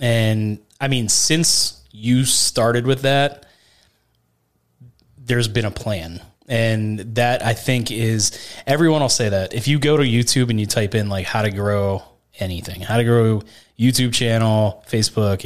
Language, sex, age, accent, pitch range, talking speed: English, male, 20-39, American, 105-125 Hz, 160 wpm